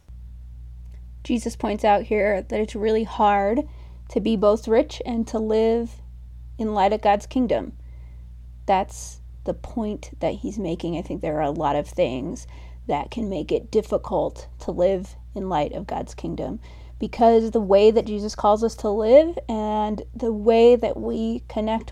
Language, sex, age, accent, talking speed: English, female, 30-49, American, 165 wpm